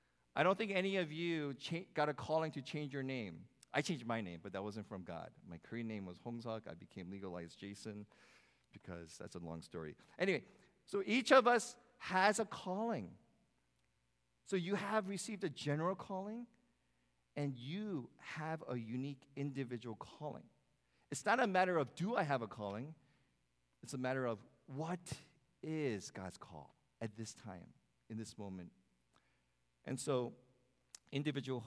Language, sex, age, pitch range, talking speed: English, male, 50-69, 105-150 Hz, 160 wpm